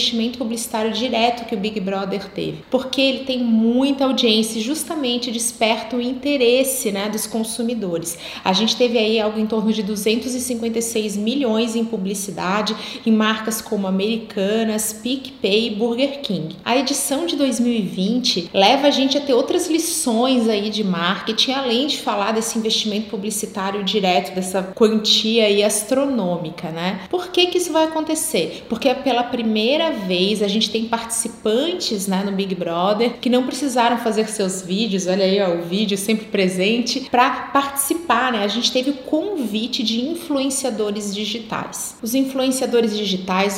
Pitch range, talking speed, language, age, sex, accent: 210-265 Hz, 155 wpm, Portuguese, 30-49, female, Brazilian